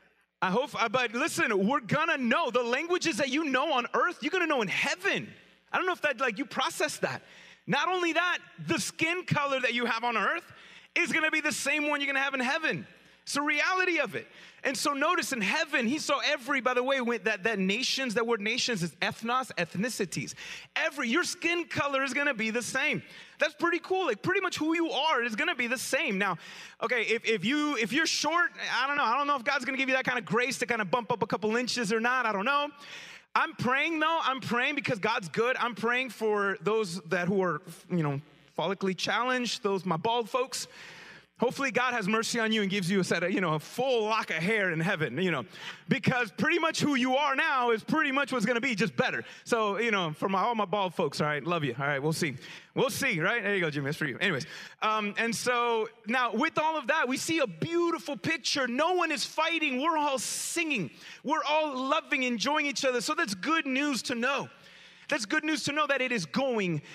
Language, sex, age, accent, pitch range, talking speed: English, male, 30-49, American, 215-295 Hz, 240 wpm